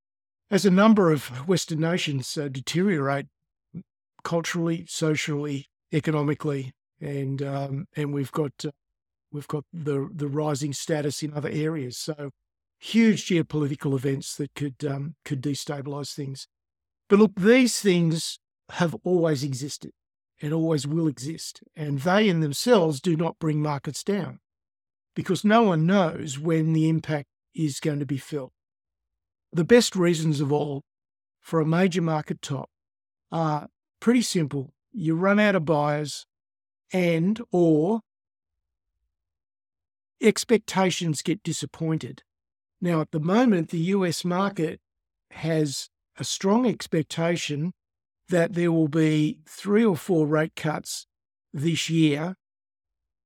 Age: 50-69